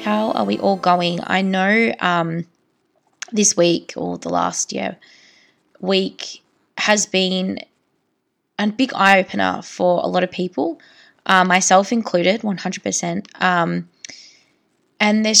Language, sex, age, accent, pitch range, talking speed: English, female, 20-39, Australian, 180-210 Hz, 120 wpm